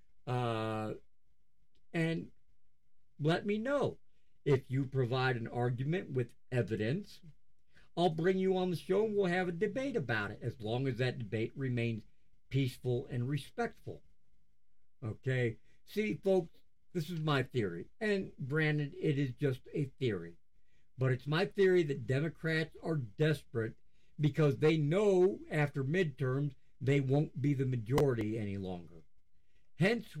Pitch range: 120-165 Hz